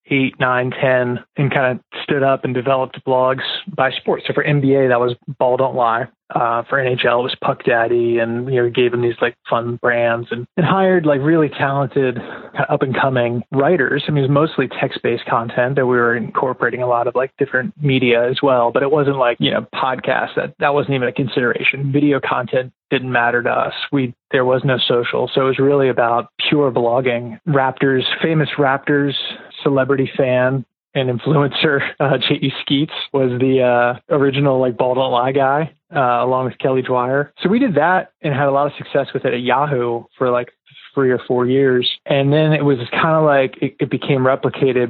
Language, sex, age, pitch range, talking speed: English, male, 20-39, 125-140 Hz, 205 wpm